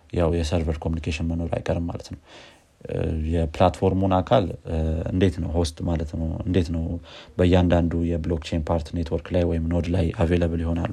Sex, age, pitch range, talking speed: male, 30-49, 85-95 Hz, 145 wpm